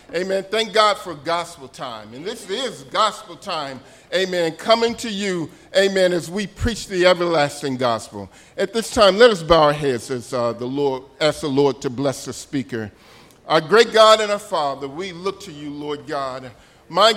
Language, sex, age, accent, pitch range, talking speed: English, male, 50-69, American, 180-250 Hz, 190 wpm